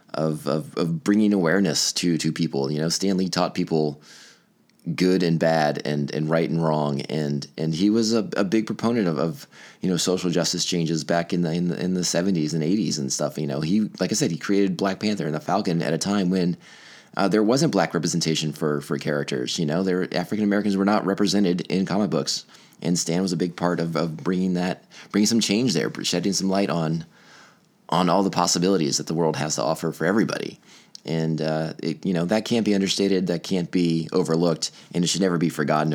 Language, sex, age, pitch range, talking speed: English, male, 20-39, 80-95 Hz, 220 wpm